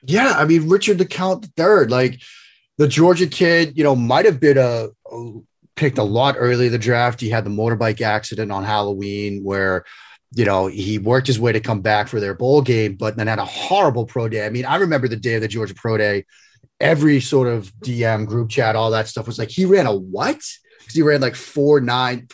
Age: 30-49